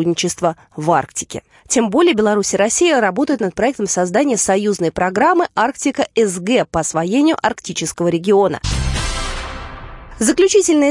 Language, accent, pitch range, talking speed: Russian, native, 170-280 Hz, 110 wpm